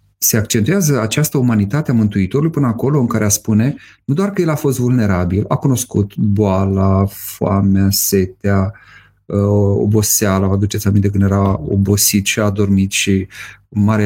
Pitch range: 100-125 Hz